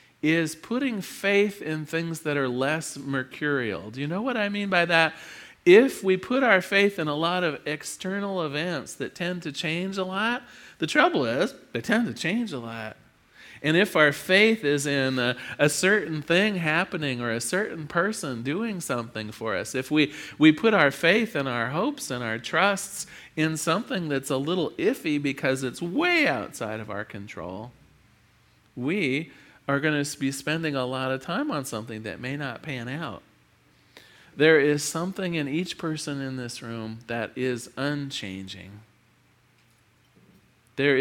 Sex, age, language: male, 40-59, English